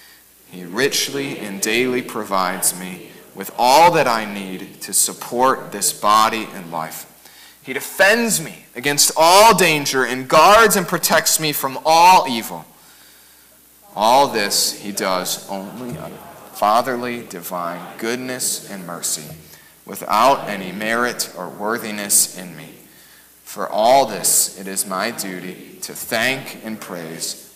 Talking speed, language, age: 130 wpm, English, 30-49